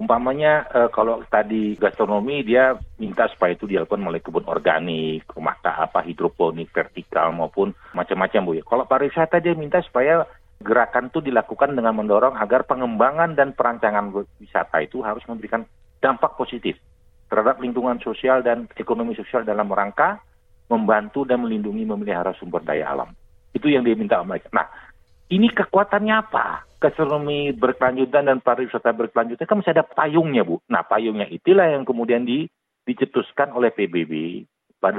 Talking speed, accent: 145 wpm, native